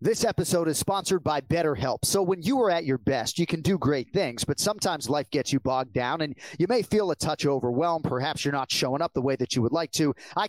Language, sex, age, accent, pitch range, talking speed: English, male, 30-49, American, 135-175 Hz, 255 wpm